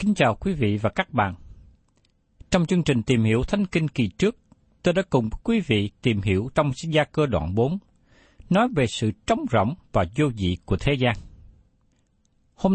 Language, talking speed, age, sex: Vietnamese, 190 wpm, 60-79, male